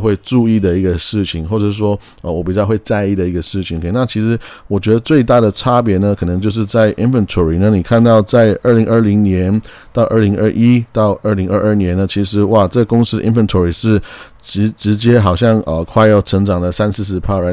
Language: Chinese